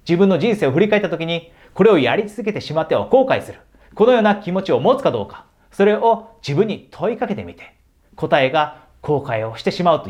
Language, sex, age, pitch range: Japanese, male, 40-59, 105-165 Hz